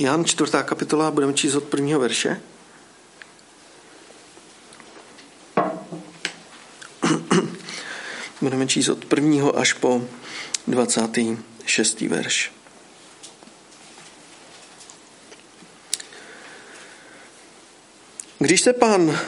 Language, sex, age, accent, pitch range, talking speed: Czech, male, 50-69, native, 145-195 Hz, 60 wpm